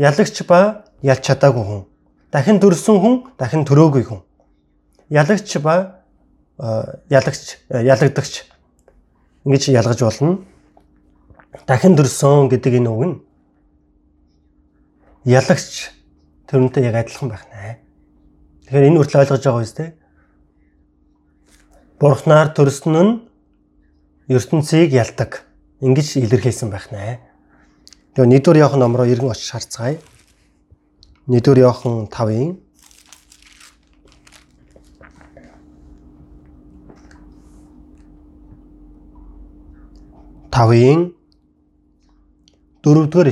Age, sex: 30-49, male